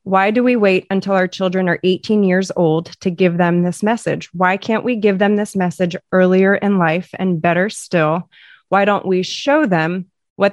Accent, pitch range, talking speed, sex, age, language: American, 175-200 Hz, 200 wpm, female, 20-39, English